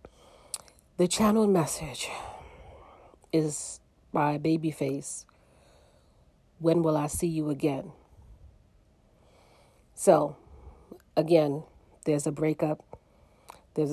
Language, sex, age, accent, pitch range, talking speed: English, female, 40-59, American, 145-170 Hz, 80 wpm